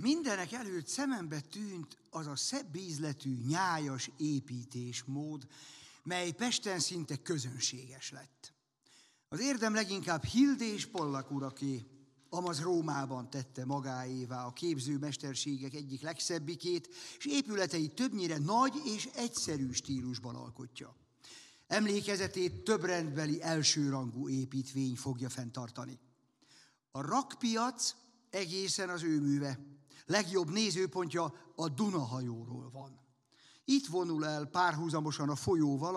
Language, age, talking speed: Hungarian, 50-69, 100 wpm